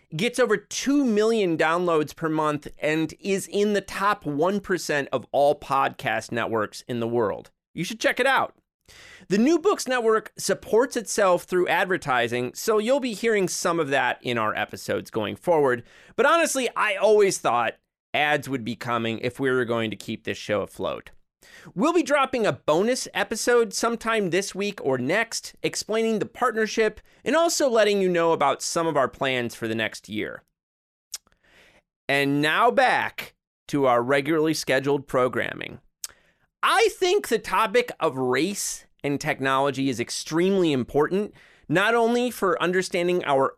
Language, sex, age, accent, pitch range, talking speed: English, male, 30-49, American, 140-220 Hz, 160 wpm